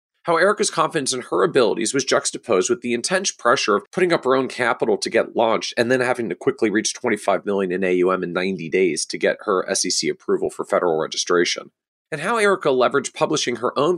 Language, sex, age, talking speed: English, male, 40-59, 210 wpm